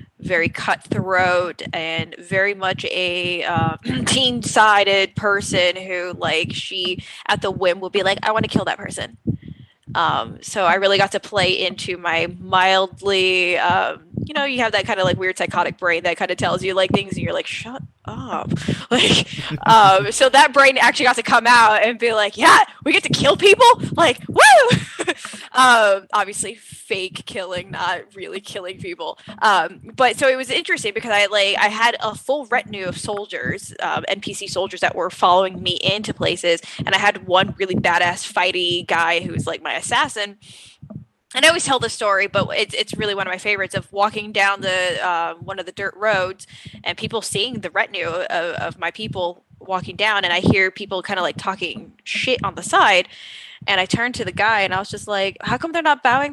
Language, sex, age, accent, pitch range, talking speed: English, female, 10-29, American, 180-220 Hz, 200 wpm